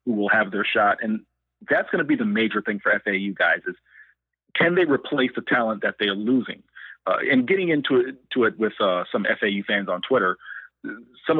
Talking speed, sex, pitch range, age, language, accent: 210 wpm, male, 105-130 Hz, 30-49, English, American